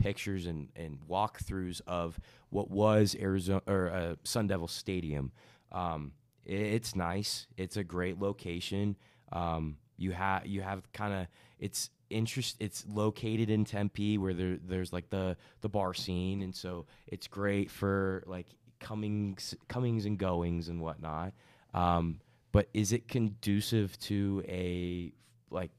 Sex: male